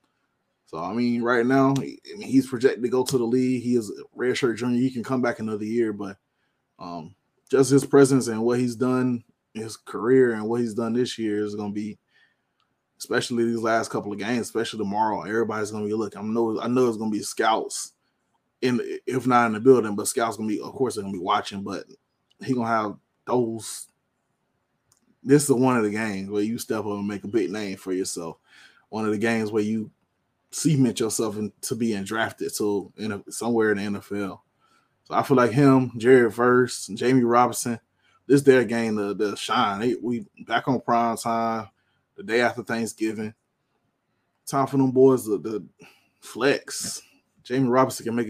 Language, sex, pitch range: English, male, 105-125 Hz